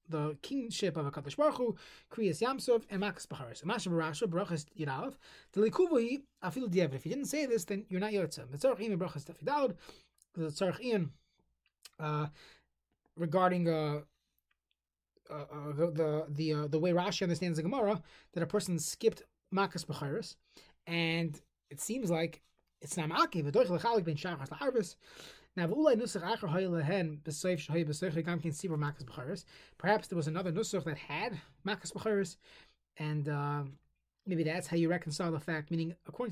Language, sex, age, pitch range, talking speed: English, male, 20-39, 155-210 Hz, 130 wpm